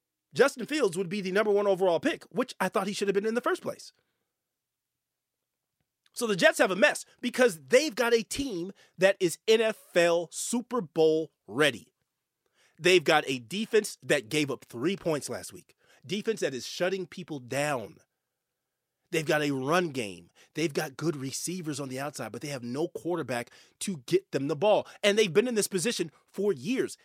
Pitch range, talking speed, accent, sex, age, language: 155-225 Hz, 185 wpm, American, male, 30-49, English